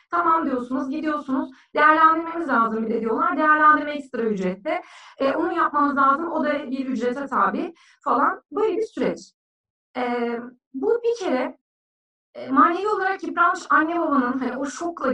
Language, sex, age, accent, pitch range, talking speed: Turkish, female, 40-59, native, 255-320 Hz, 145 wpm